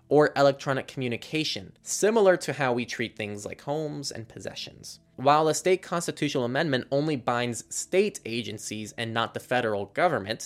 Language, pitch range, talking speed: English, 110-150 Hz, 155 wpm